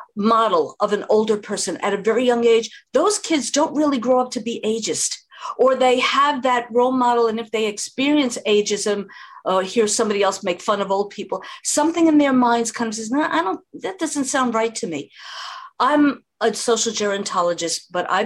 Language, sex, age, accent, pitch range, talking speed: English, female, 50-69, American, 170-240 Hz, 200 wpm